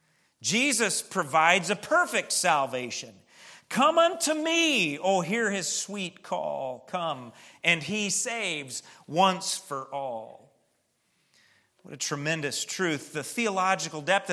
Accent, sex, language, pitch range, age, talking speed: American, male, English, 160-215 Hz, 40-59, 115 wpm